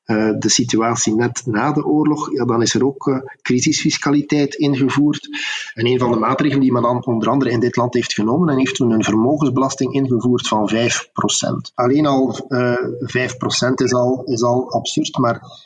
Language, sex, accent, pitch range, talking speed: Dutch, male, Dutch, 115-140 Hz, 175 wpm